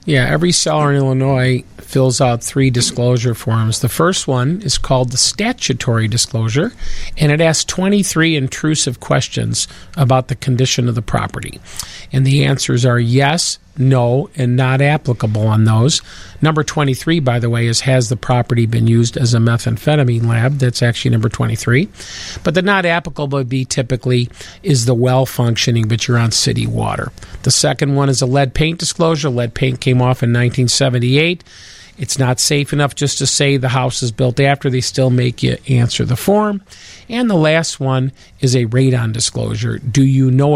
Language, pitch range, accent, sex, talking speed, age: English, 120-145 Hz, American, male, 180 wpm, 50-69